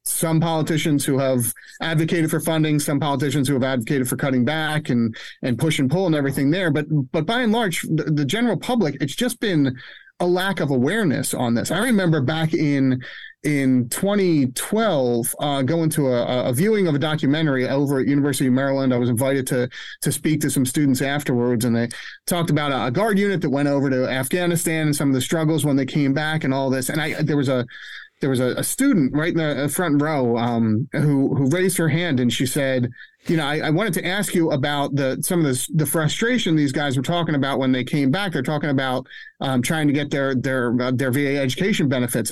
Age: 30-49